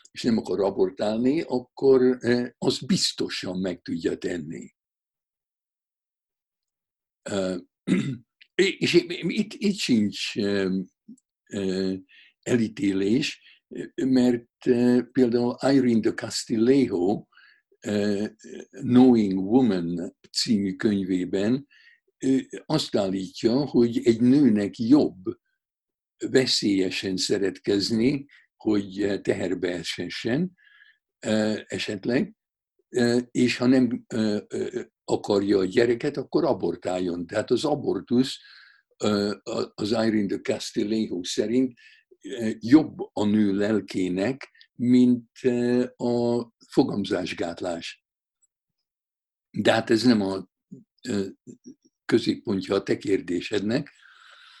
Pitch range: 100-145 Hz